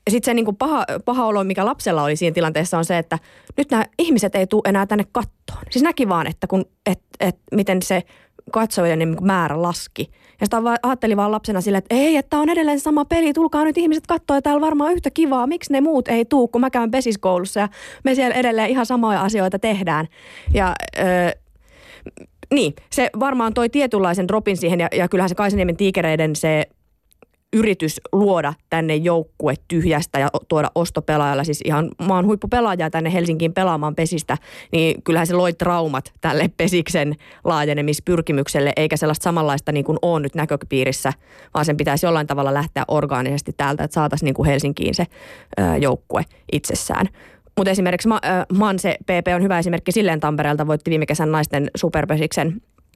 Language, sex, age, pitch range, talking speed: Finnish, female, 30-49, 155-220 Hz, 170 wpm